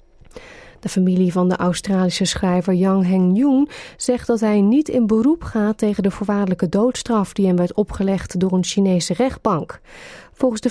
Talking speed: 165 wpm